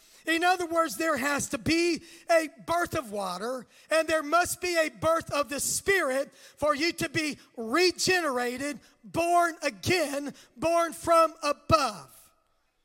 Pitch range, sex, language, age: 300-355 Hz, male, English, 40-59